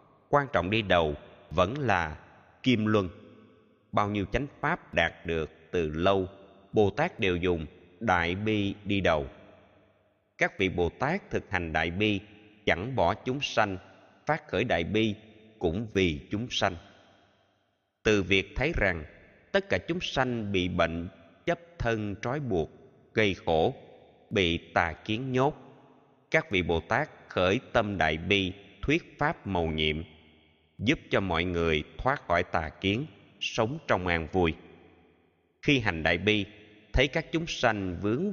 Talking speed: 150 wpm